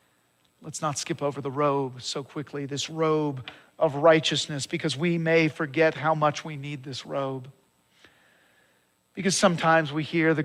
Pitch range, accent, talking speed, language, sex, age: 135-170 Hz, American, 155 wpm, English, male, 50-69